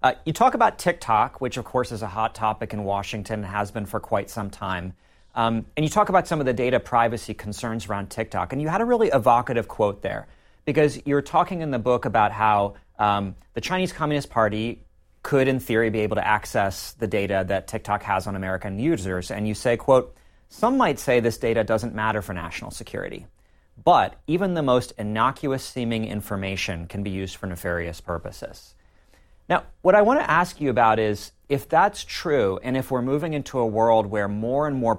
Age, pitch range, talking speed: 30-49, 100-125 Hz, 200 wpm